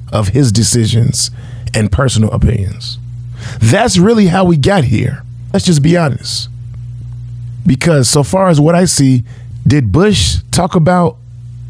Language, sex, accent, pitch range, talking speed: English, male, American, 120-150 Hz, 140 wpm